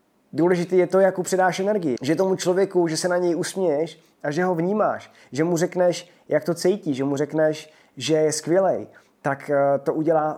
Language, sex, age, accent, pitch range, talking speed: Czech, male, 20-39, native, 120-155 Hz, 190 wpm